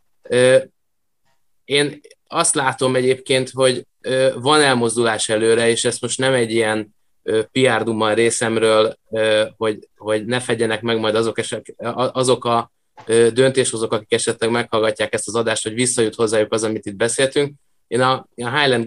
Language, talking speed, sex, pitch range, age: Hungarian, 135 wpm, male, 110-130 Hz, 20-39